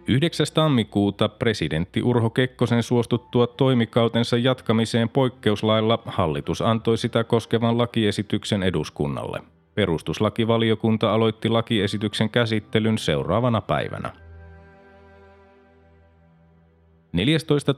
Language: Finnish